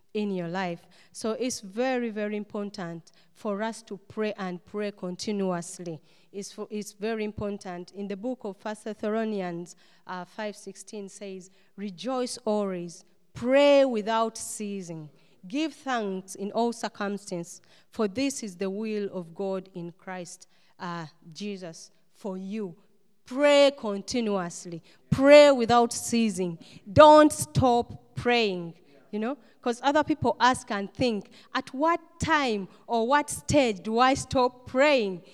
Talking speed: 135 wpm